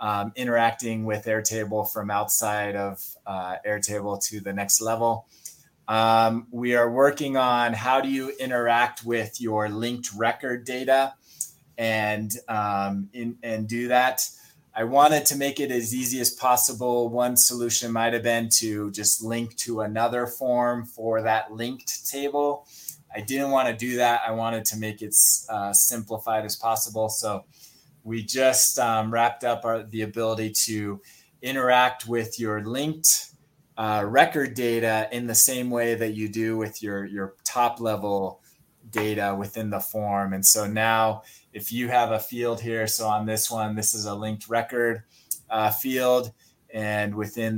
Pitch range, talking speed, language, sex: 105-120 Hz, 160 wpm, English, male